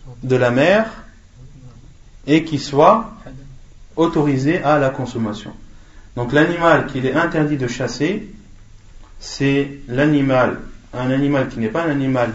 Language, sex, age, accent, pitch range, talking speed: French, male, 30-49, French, 115-160 Hz, 125 wpm